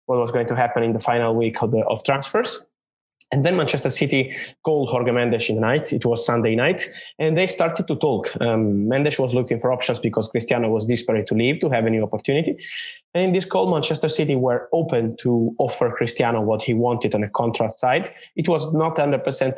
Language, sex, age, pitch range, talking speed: English, male, 20-39, 115-145 Hz, 210 wpm